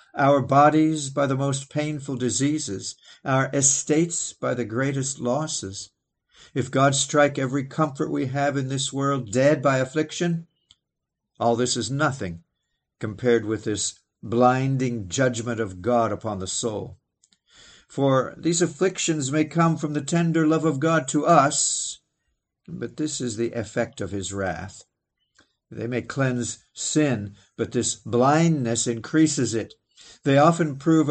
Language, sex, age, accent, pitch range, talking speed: English, male, 50-69, American, 115-150 Hz, 140 wpm